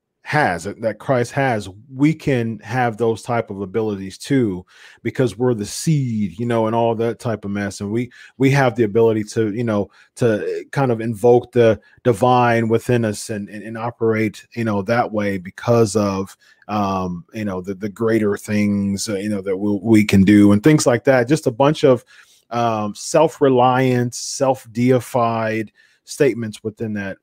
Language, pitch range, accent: English, 105-125 Hz, American